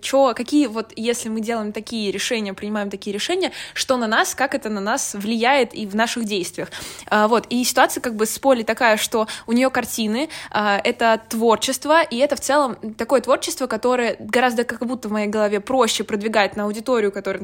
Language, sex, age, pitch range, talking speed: Russian, female, 20-39, 210-250 Hz, 195 wpm